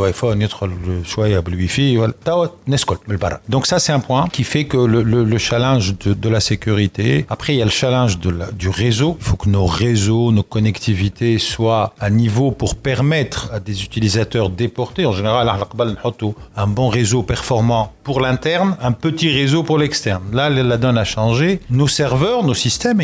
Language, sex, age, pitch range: Arabic, male, 50-69, 105-135 Hz